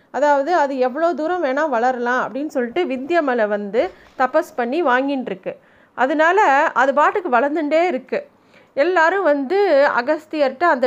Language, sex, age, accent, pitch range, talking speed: Tamil, female, 30-49, native, 245-305 Hz, 125 wpm